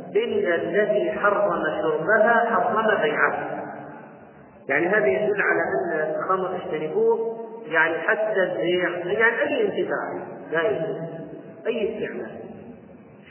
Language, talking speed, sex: Arabic, 100 wpm, male